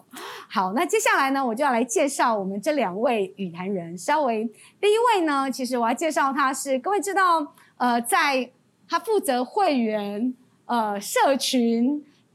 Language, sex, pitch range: Chinese, female, 225-340 Hz